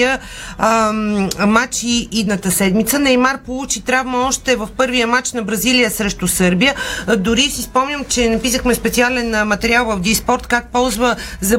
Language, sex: Bulgarian, female